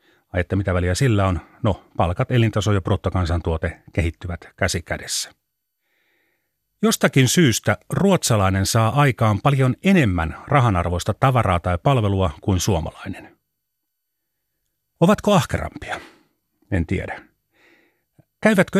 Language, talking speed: Finnish, 100 wpm